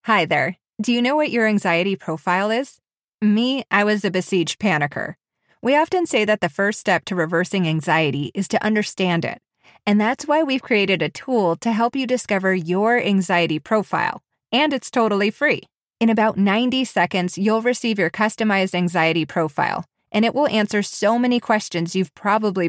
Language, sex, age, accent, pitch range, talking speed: English, female, 30-49, American, 180-230 Hz, 175 wpm